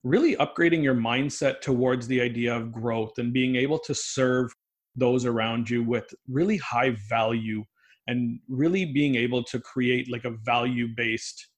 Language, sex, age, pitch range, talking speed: English, male, 30-49, 120-140 Hz, 155 wpm